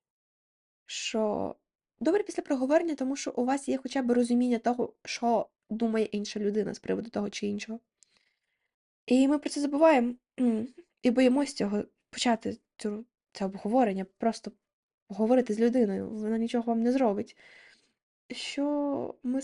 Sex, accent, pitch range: female, native, 205-255 Hz